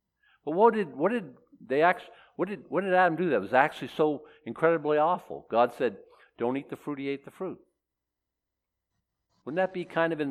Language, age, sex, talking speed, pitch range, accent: English, 50-69, male, 205 wpm, 120-170 Hz, American